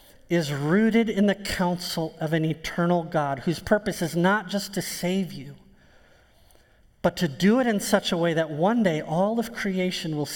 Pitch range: 140-195 Hz